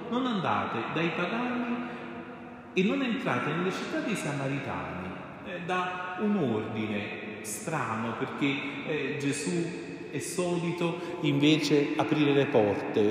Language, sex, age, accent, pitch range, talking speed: Italian, male, 40-59, native, 125-180 Hz, 115 wpm